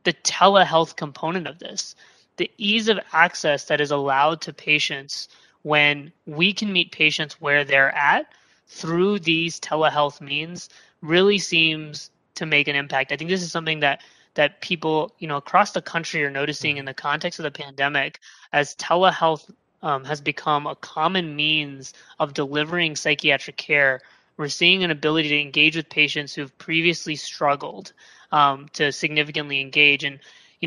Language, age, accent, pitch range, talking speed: English, 20-39, American, 145-175 Hz, 160 wpm